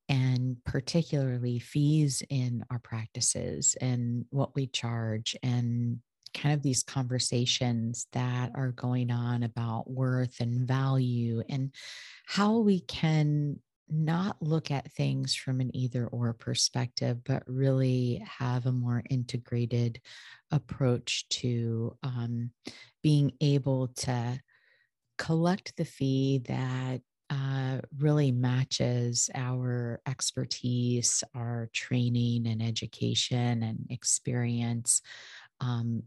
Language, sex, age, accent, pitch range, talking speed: English, female, 30-49, American, 120-135 Hz, 105 wpm